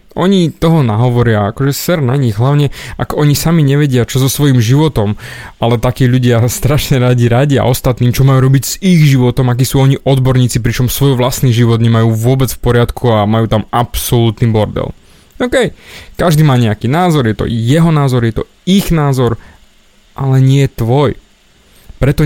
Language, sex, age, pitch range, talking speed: Slovak, male, 20-39, 115-145 Hz, 175 wpm